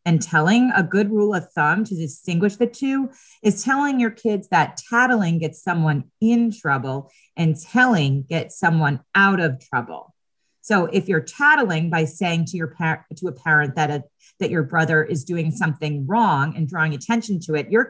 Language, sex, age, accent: English, female, 30-49, American